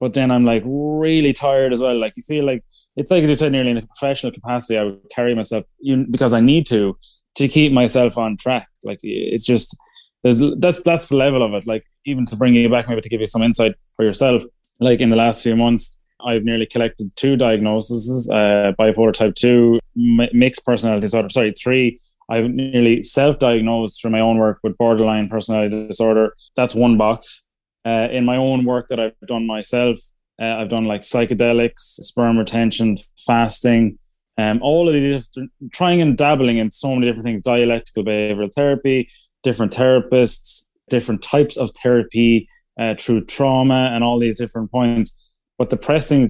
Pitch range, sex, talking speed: 110-130 Hz, male, 185 wpm